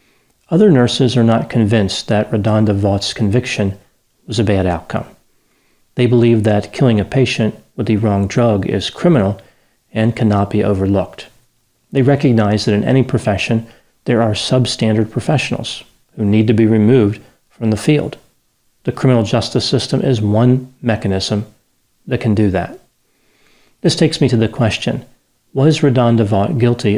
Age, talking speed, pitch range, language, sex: 40-59, 150 wpm, 105-125 Hz, English, male